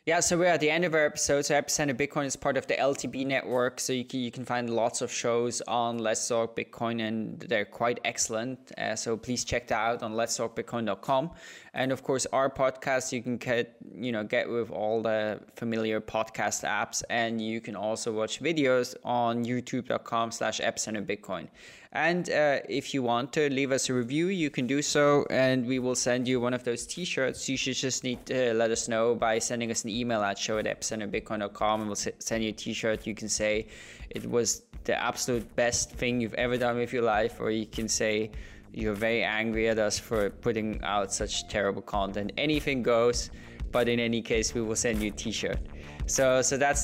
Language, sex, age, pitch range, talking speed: English, male, 20-39, 110-130 Hz, 205 wpm